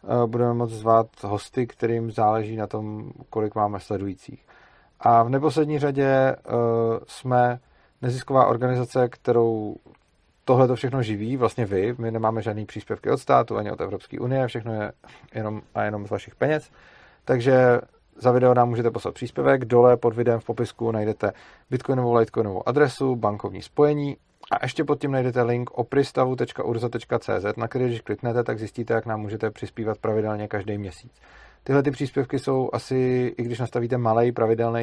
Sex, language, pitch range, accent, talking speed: male, Czech, 110-125 Hz, native, 155 wpm